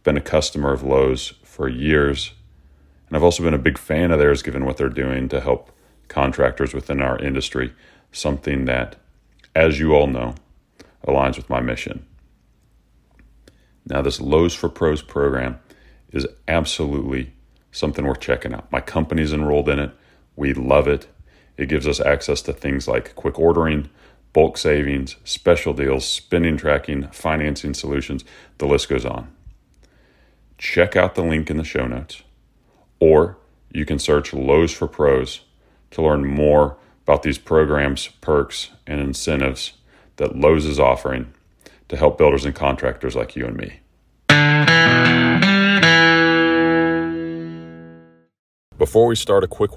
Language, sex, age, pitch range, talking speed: English, male, 30-49, 65-80 Hz, 145 wpm